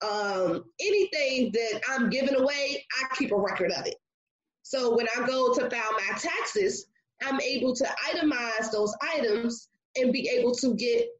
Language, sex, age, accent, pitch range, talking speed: English, female, 20-39, American, 220-285 Hz, 165 wpm